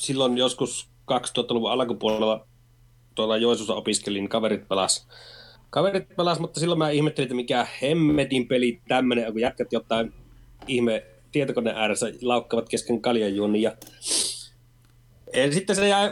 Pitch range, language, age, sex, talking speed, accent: 120-140 Hz, Finnish, 30-49, male, 115 wpm, native